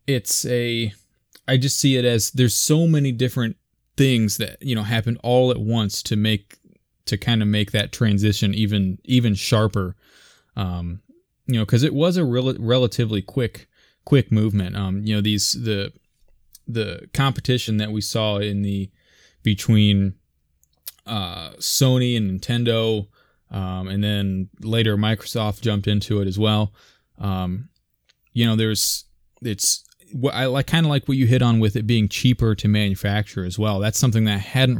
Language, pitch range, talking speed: English, 100-125 Hz, 165 wpm